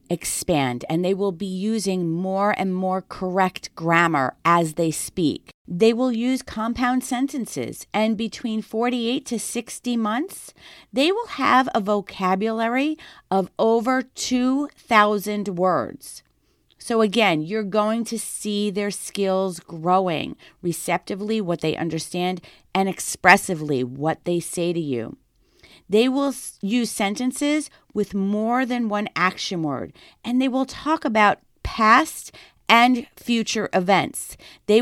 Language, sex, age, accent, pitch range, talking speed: English, female, 40-59, American, 185-230 Hz, 130 wpm